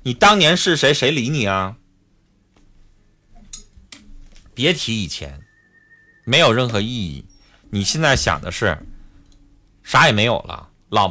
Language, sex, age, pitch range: Chinese, male, 30-49, 95-150 Hz